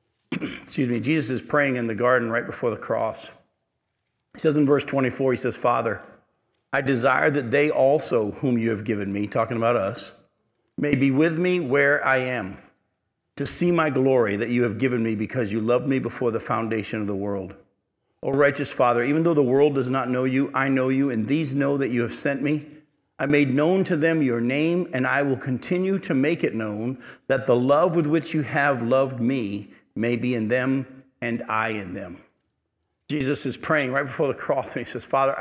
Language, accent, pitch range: English, American, 115-140 Hz